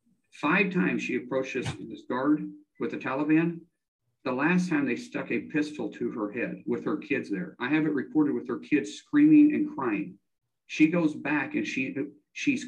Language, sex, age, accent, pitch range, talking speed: English, male, 50-69, American, 145-235 Hz, 185 wpm